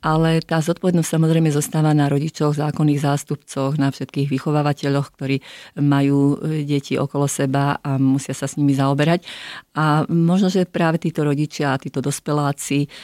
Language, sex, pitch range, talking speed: Slovak, female, 130-150 Hz, 145 wpm